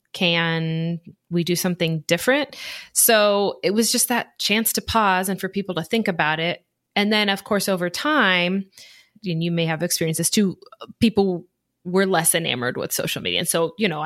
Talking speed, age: 190 wpm, 20-39